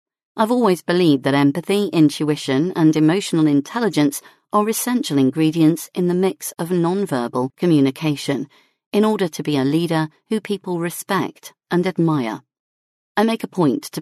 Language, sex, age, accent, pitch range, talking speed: English, female, 40-59, British, 145-185 Hz, 145 wpm